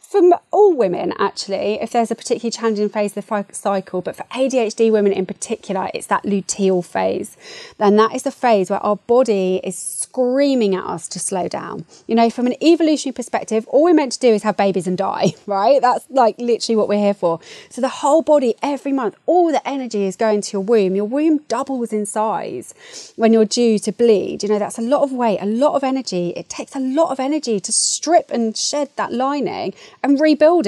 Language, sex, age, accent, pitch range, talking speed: English, female, 30-49, British, 205-290 Hz, 215 wpm